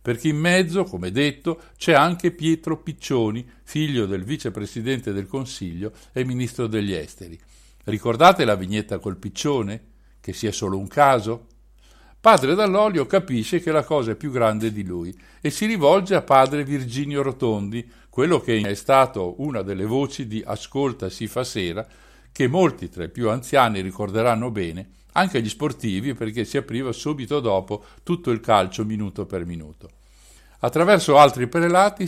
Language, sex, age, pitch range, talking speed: Italian, male, 60-79, 105-145 Hz, 155 wpm